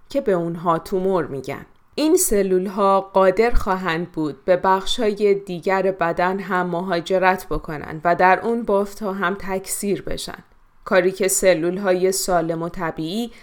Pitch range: 170-200 Hz